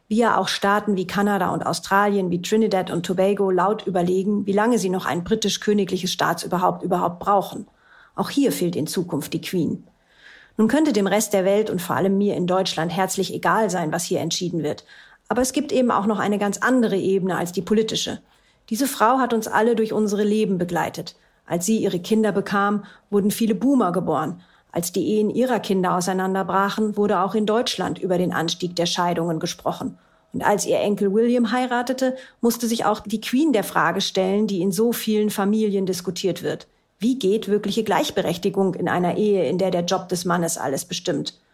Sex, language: female, German